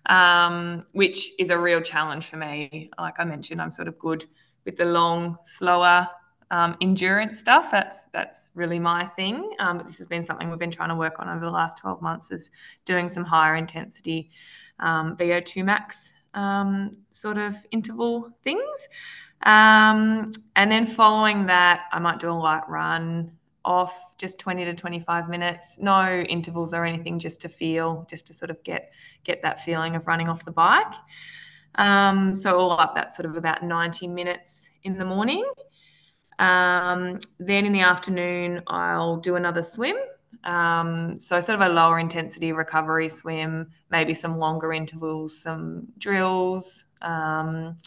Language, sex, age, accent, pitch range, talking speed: English, female, 20-39, Australian, 165-185 Hz, 165 wpm